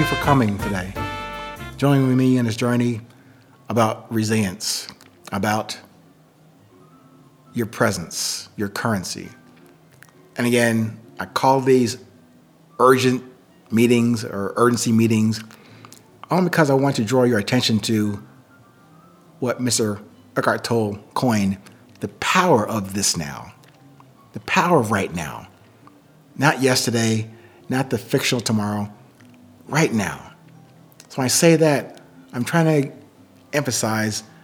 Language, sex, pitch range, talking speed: English, male, 110-140 Hz, 120 wpm